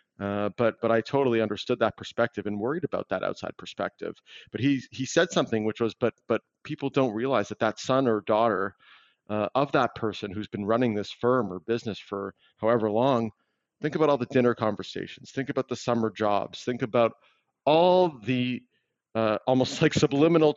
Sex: male